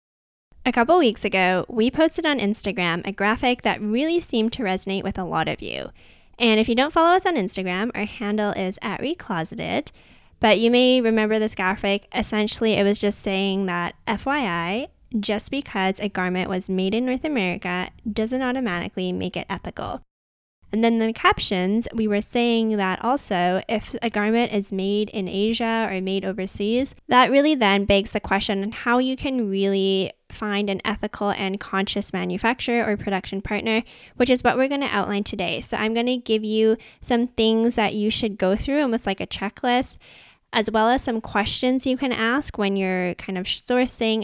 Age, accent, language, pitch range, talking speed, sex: 10-29, American, English, 195-240 Hz, 185 wpm, female